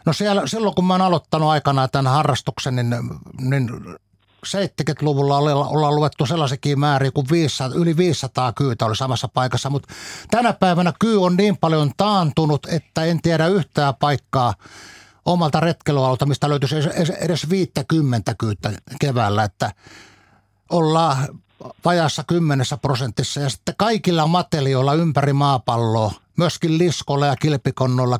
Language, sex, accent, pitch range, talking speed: Finnish, male, native, 130-165 Hz, 130 wpm